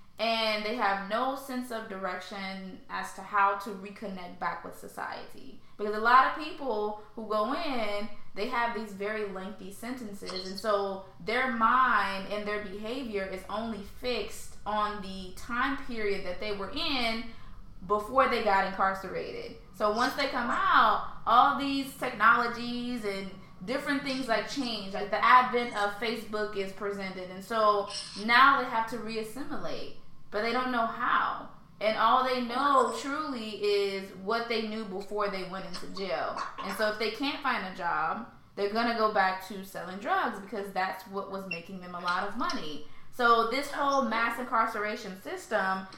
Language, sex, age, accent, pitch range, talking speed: English, female, 20-39, American, 200-245 Hz, 165 wpm